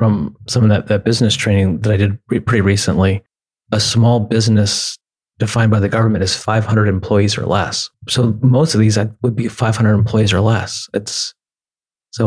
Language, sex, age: English, male, 30-49